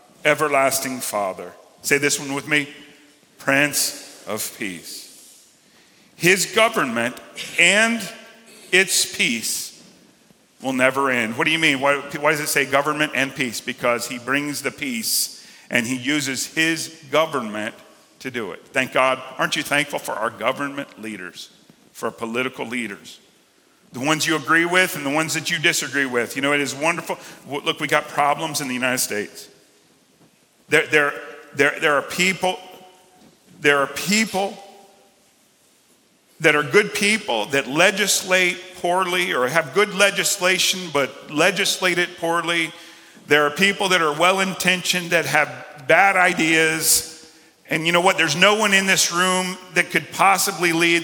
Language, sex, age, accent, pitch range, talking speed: English, male, 50-69, American, 140-185 Hz, 150 wpm